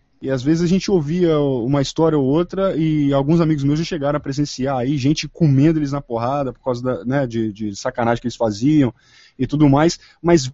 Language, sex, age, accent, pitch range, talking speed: Portuguese, male, 20-39, Brazilian, 135-170 Hz, 215 wpm